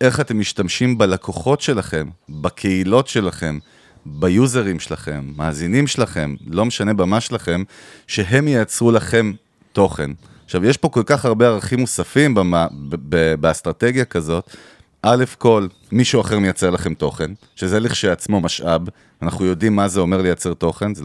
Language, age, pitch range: Hebrew, 30-49, 90-120 Hz